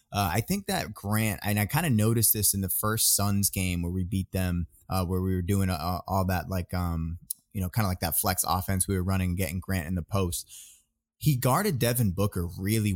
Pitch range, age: 95-115 Hz, 20-39